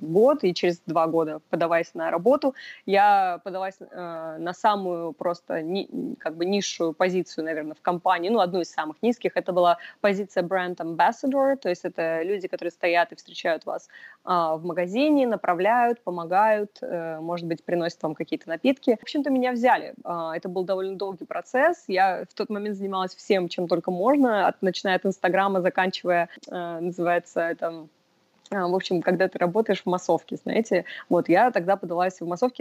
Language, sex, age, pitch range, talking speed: Russian, female, 20-39, 175-220 Hz, 175 wpm